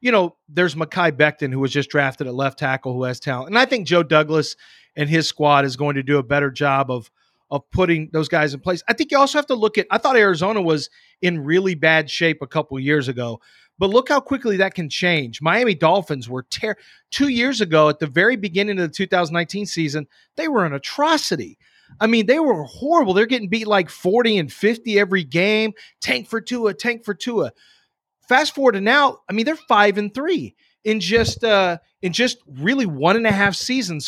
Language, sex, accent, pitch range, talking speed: English, male, American, 150-220 Hz, 225 wpm